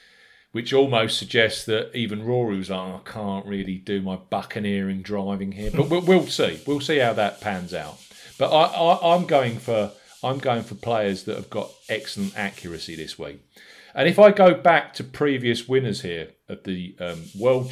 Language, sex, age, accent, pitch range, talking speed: English, male, 40-59, British, 100-135 Hz, 190 wpm